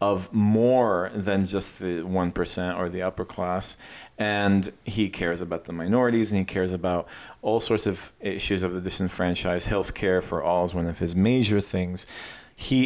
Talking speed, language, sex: 175 wpm, English, male